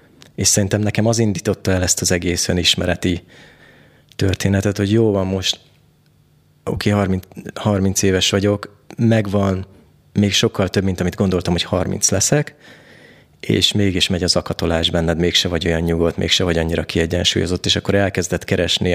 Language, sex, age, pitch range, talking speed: Hungarian, male, 30-49, 90-110 Hz, 155 wpm